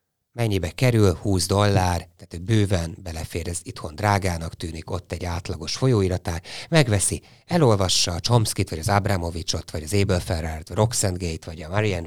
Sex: male